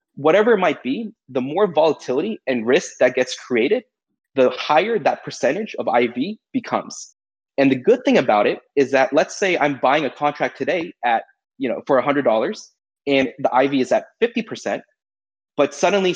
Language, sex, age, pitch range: English, male, 20-39, 130-195 Hz